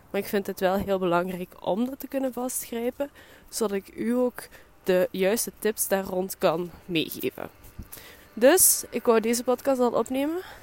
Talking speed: 170 wpm